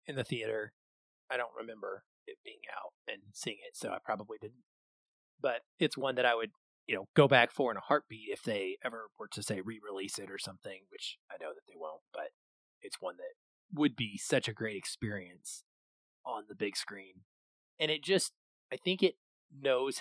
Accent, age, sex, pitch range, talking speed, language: American, 30-49, male, 105-155 Hz, 200 wpm, English